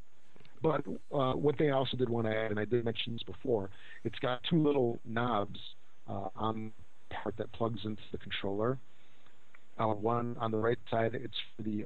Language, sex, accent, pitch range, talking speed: English, male, American, 100-120 Hz, 190 wpm